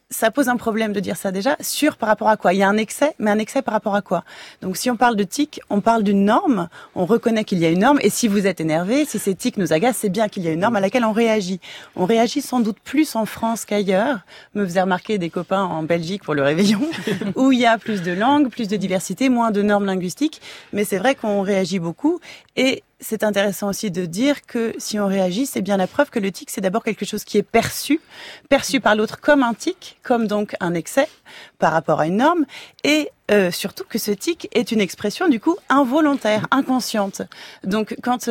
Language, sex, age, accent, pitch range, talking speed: French, female, 30-49, French, 195-255 Hz, 245 wpm